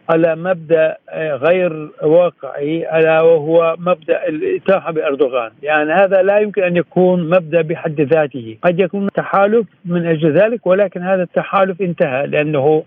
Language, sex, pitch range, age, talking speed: Arabic, male, 160-185 Hz, 60-79, 135 wpm